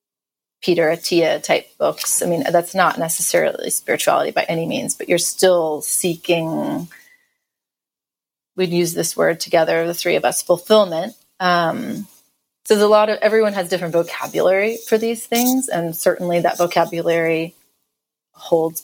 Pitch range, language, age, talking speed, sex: 170-195 Hz, English, 30-49, 145 wpm, female